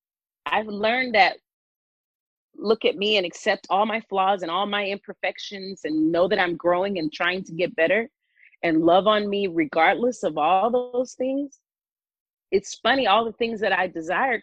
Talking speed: 175 wpm